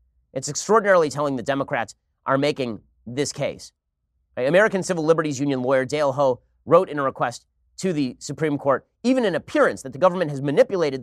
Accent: American